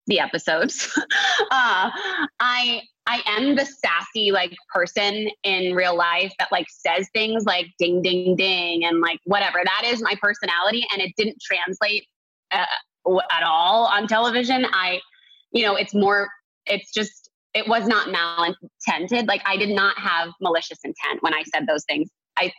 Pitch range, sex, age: 170-215 Hz, female, 20-39